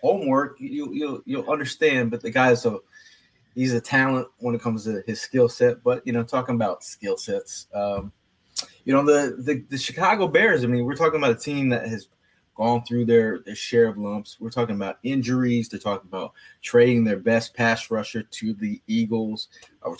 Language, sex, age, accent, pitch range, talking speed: English, male, 20-39, American, 110-135 Hz, 195 wpm